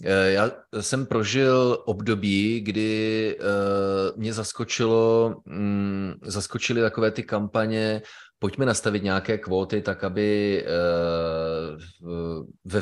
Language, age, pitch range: Czech, 30-49, 100-115 Hz